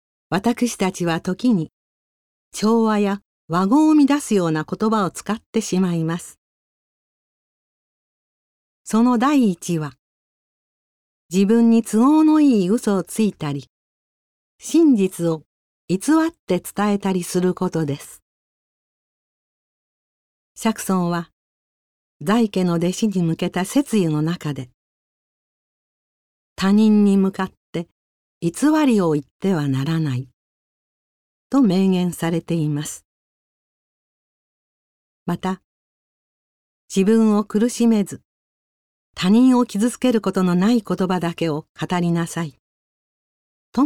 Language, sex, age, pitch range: Japanese, female, 50-69, 160-225 Hz